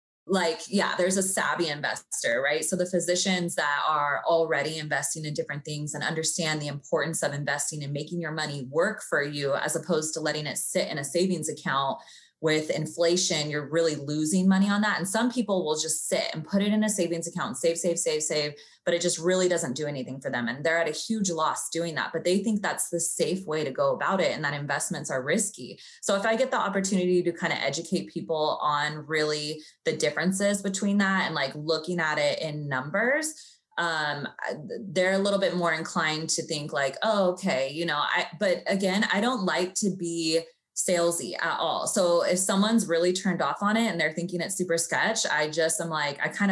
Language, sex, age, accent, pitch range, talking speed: English, female, 20-39, American, 155-190 Hz, 215 wpm